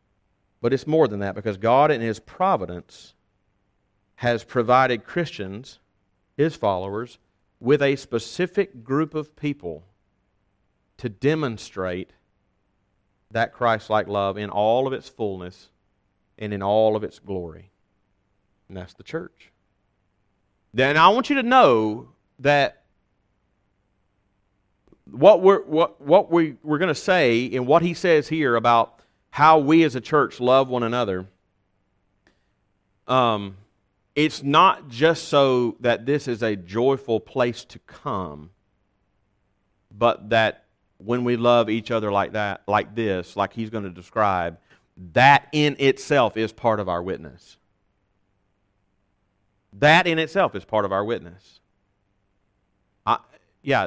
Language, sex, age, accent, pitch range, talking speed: English, male, 40-59, American, 100-130 Hz, 130 wpm